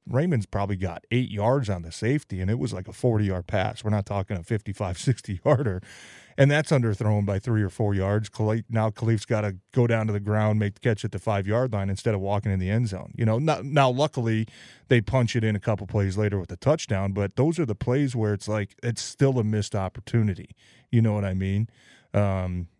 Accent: American